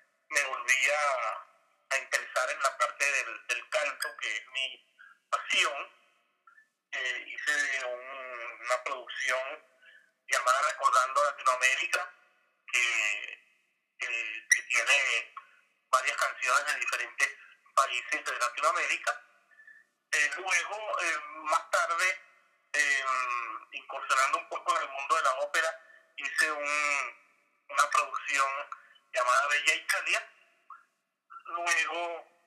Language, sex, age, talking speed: Spanish, male, 30-49, 100 wpm